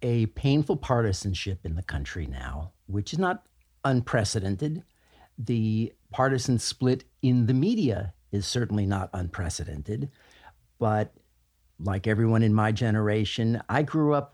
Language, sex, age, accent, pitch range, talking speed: English, male, 50-69, American, 110-130 Hz, 125 wpm